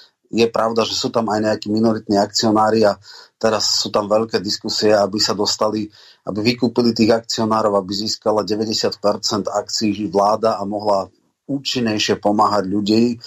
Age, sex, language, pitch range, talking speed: 30-49, male, Slovak, 105-115 Hz, 145 wpm